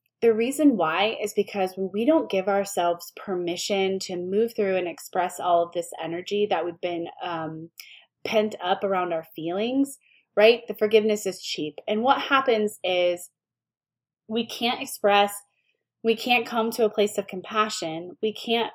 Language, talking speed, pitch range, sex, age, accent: English, 165 wpm, 185-235 Hz, female, 20-39, American